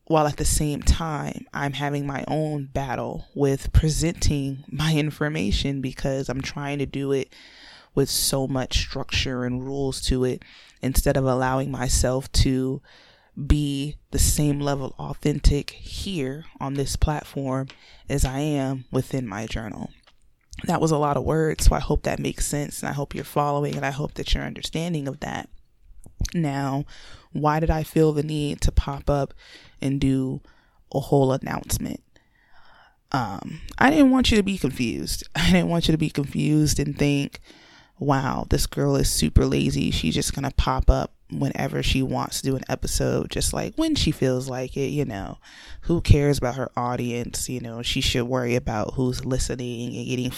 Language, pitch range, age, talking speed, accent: English, 125-145 Hz, 20-39, 175 wpm, American